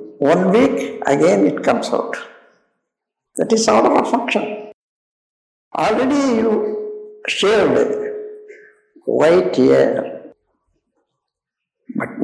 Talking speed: 90 wpm